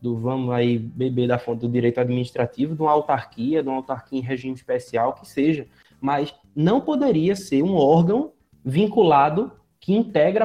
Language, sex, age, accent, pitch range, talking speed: Portuguese, male, 20-39, Brazilian, 130-180 Hz, 165 wpm